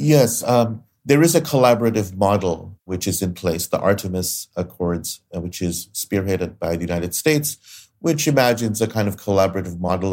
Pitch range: 85-105 Hz